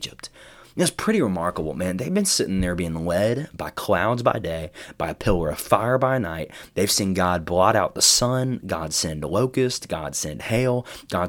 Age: 20-39